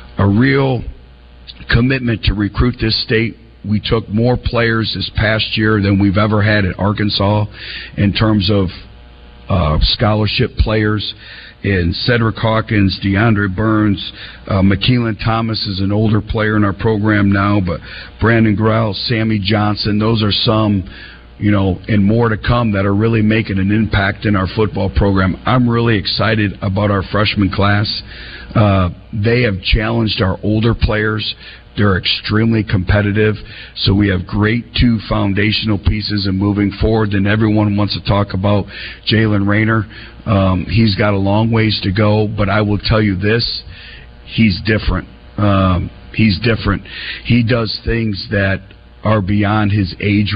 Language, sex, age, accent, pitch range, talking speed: English, male, 50-69, American, 100-110 Hz, 150 wpm